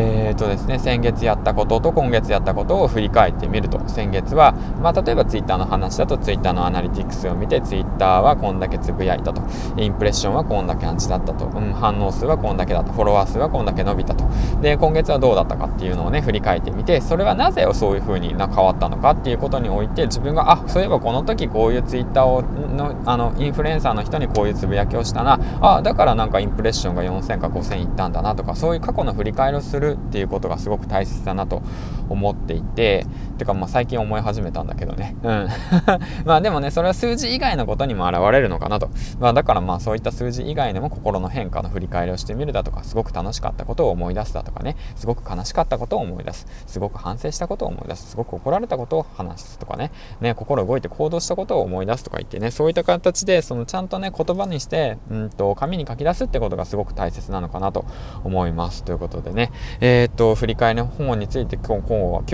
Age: 20-39